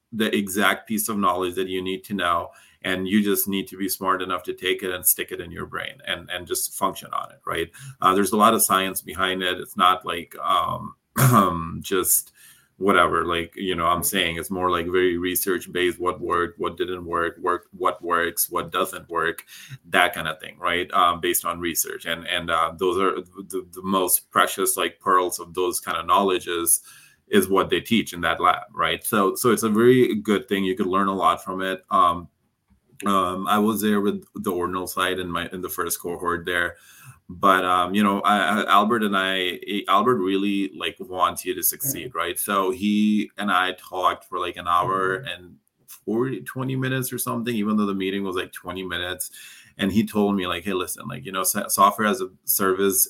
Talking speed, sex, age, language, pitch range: 210 wpm, male, 30-49, English, 90-105 Hz